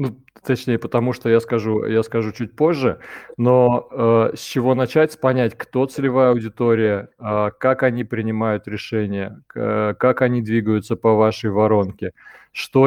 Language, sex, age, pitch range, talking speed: Russian, male, 20-39, 110-125 Hz, 145 wpm